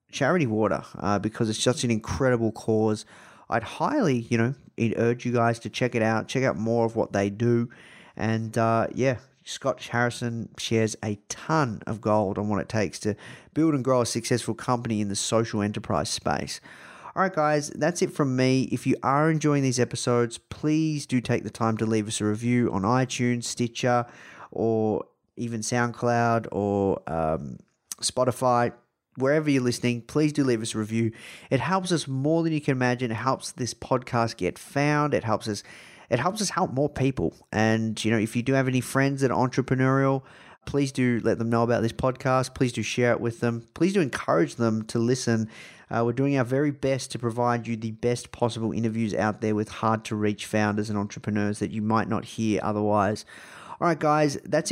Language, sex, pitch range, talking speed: English, male, 110-135 Hz, 195 wpm